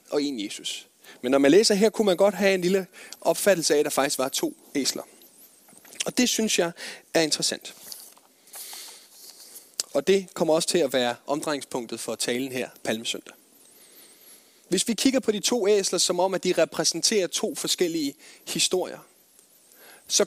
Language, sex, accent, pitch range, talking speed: Danish, male, native, 150-200 Hz, 165 wpm